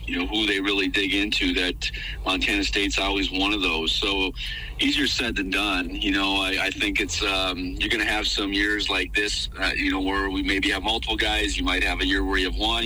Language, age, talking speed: English, 40-59, 240 wpm